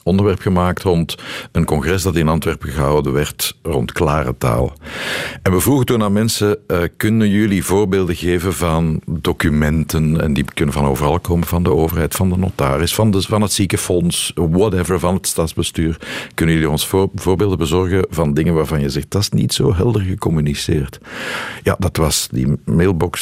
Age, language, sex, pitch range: 50-69, Dutch, male, 80-100 Hz